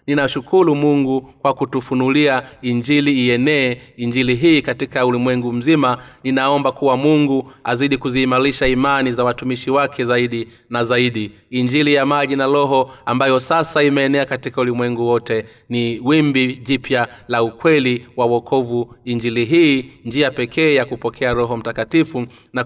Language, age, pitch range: Swahili, 30-49, 120-140 Hz